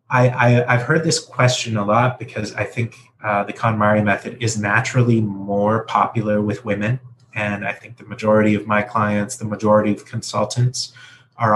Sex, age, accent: male, 30-49, American